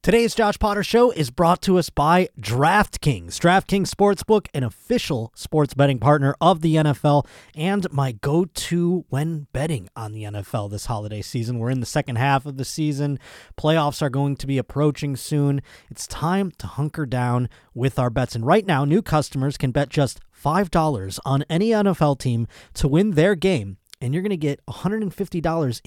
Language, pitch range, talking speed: English, 120-170 Hz, 185 wpm